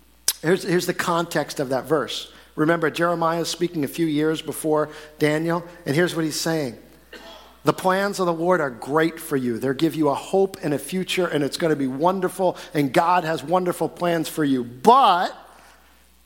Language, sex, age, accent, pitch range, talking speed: English, male, 50-69, American, 125-185 Hz, 190 wpm